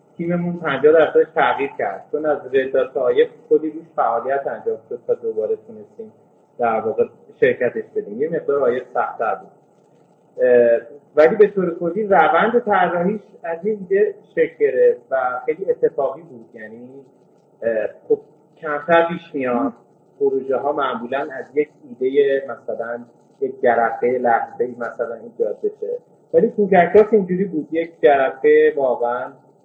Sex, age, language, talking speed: male, 30-49, Persian, 125 wpm